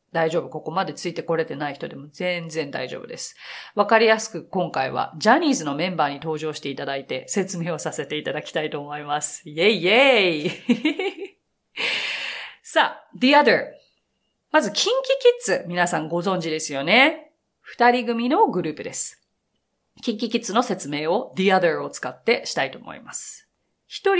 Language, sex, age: Japanese, female, 40-59